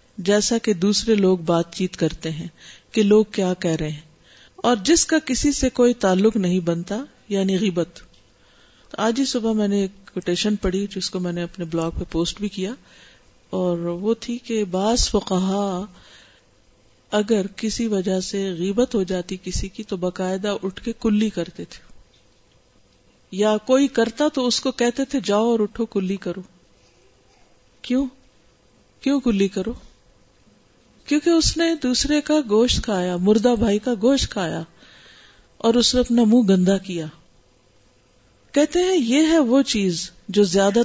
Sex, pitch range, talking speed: female, 180-240 Hz, 160 wpm